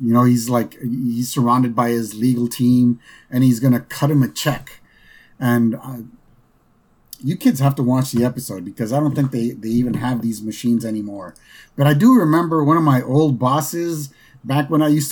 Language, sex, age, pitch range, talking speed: English, male, 30-49, 125-150 Hz, 200 wpm